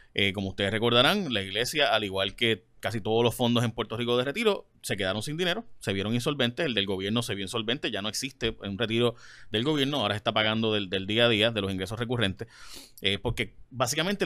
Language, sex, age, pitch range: Spanish, male, 30-49, 110-150 Hz